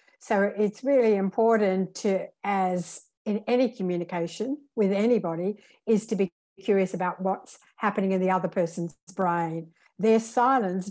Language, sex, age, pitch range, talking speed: English, female, 60-79, 185-210 Hz, 140 wpm